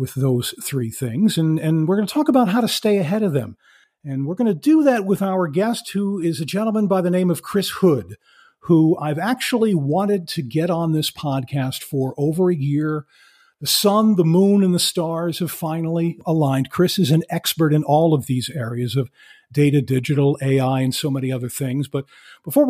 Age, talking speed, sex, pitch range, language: 50-69, 210 wpm, male, 140-185 Hz, English